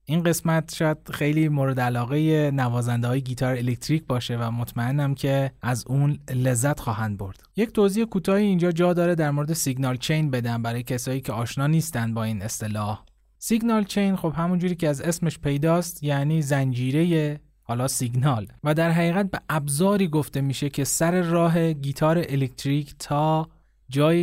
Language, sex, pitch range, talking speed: Persian, male, 125-160 Hz, 160 wpm